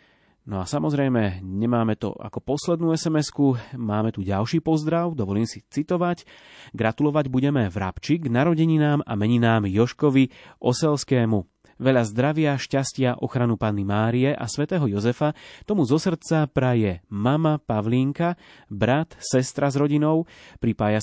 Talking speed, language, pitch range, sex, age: 125 wpm, Slovak, 110-150 Hz, male, 30-49